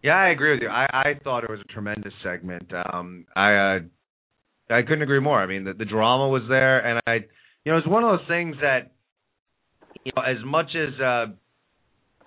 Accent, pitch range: American, 100-120 Hz